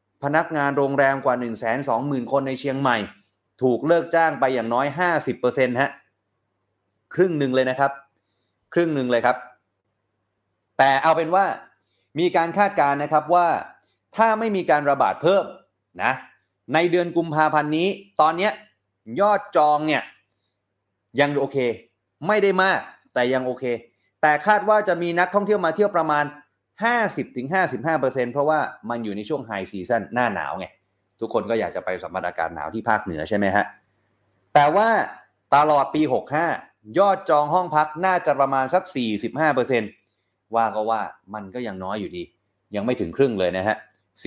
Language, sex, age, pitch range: Thai, male, 30-49, 105-155 Hz